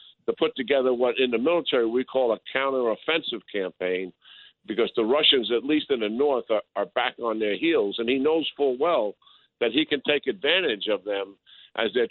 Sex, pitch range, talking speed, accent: male, 115-145 Hz, 200 wpm, American